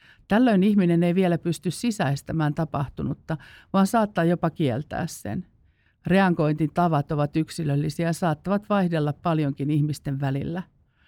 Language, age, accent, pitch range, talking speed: Finnish, 50-69, native, 150-180 Hz, 120 wpm